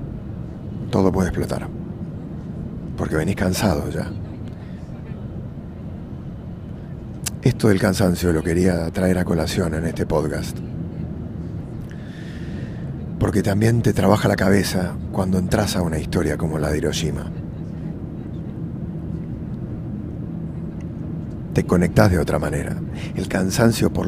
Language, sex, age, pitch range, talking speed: English, male, 40-59, 85-100 Hz, 100 wpm